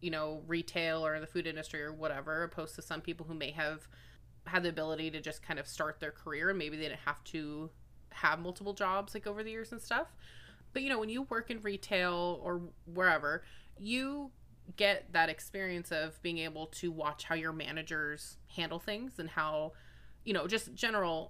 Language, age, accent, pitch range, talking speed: English, 20-39, American, 155-185 Hz, 200 wpm